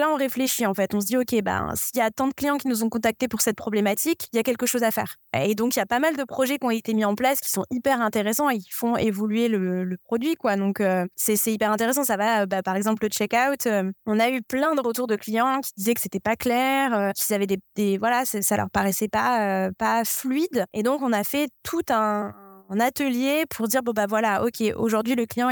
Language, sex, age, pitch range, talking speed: French, female, 20-39, 210-255 Hz, 265 wpm